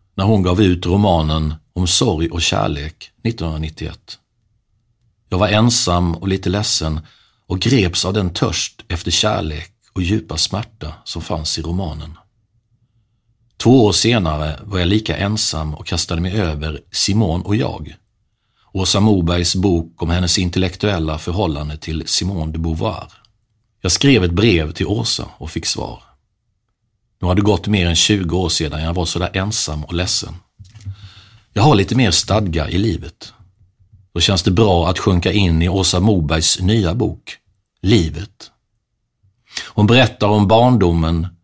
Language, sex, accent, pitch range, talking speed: English, male, Swedish, 85-110 Hz, 150 wpm